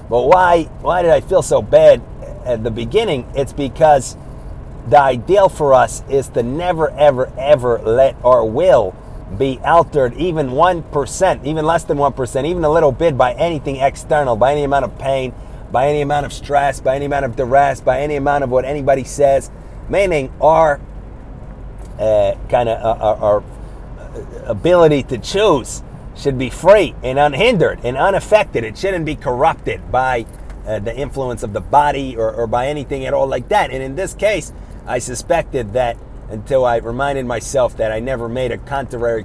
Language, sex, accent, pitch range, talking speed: English, male, American, 120-145 Hz, 175 wpm